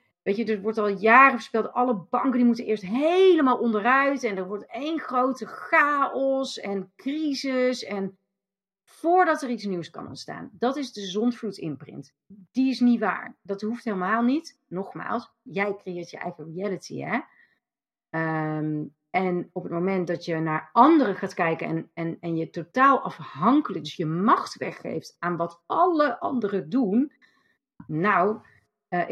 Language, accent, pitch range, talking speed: Dutch, Dutch, 170-240 Hz, 160 wpm